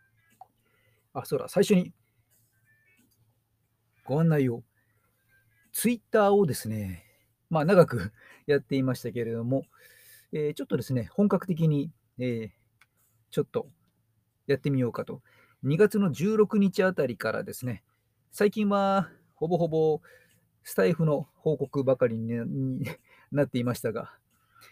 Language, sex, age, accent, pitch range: Japanese, male, 40-59, native, 115-170 Hz